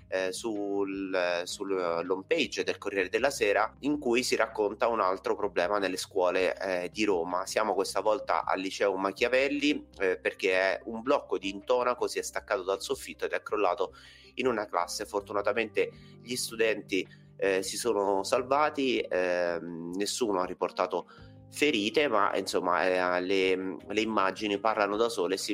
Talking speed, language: 155 wpm, Italian